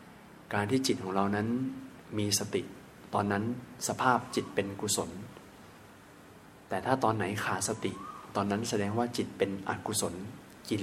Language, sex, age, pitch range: Thai, male, 20-39, 105-130 Hz